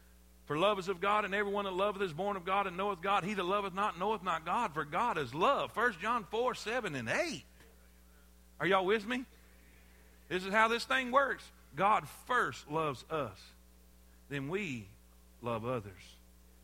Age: 50-69